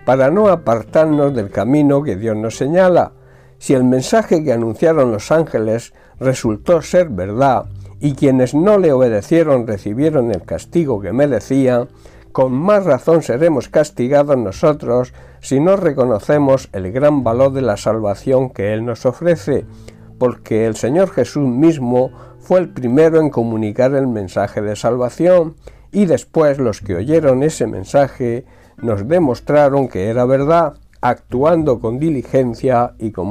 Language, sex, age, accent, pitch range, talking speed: Spanish, male, 60-79, Spanish, 110-150 Hz, 140 wpm